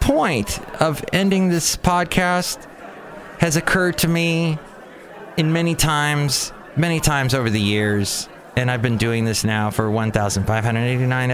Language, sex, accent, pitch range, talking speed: English, male, American, 115-170 Hz, 130 wpm